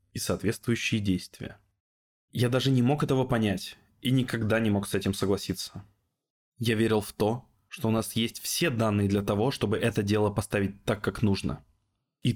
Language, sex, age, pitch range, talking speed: Russian, male, 20-39, 100-125 Hz, 175 wpm